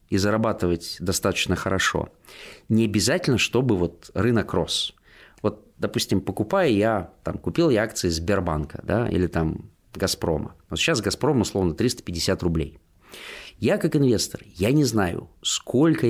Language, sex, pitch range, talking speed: Russian, male, 85-115 Hz, 135 wpm